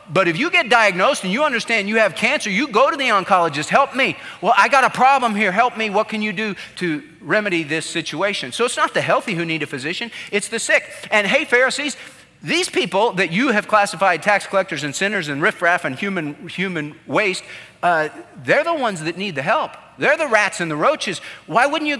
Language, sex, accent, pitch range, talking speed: English, male, American, 175-270 Hz, 225 wpm